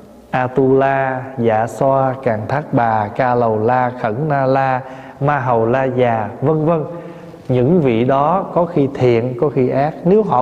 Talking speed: 185 wpm